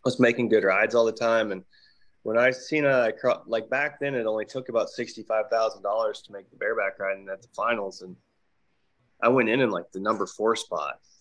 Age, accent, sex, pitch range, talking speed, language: 20-39, American, male, 105-120 Hz, 220 wpm, English